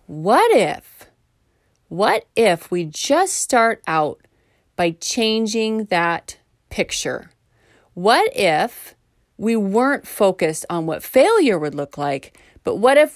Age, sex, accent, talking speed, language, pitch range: 30-49, female, American, 120 wpm, English, 160-225 Hz